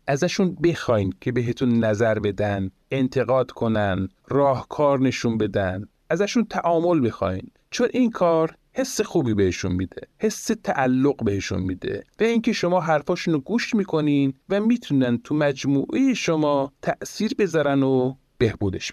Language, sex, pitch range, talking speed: Persian, male, 125-190 Hz, 125 wpm